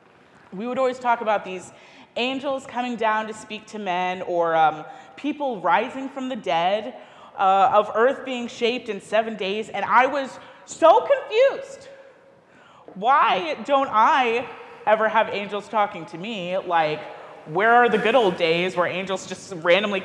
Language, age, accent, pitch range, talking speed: English, 30-49, American, 190-255 Hz, 160 wpm